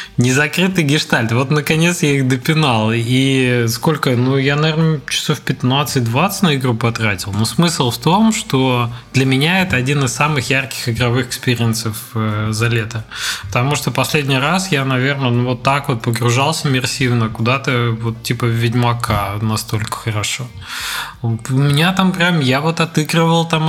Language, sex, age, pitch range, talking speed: Russian, male, 20-39, 120-155 Hz, 145 wpm